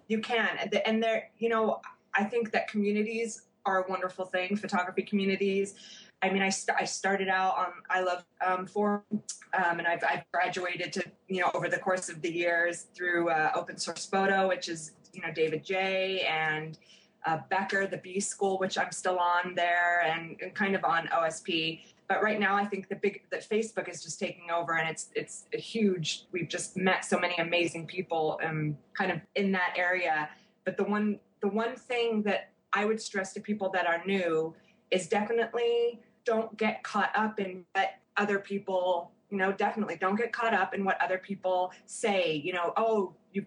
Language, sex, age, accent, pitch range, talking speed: English, female, 20-39, American, 180-215 Hz, 195 wpm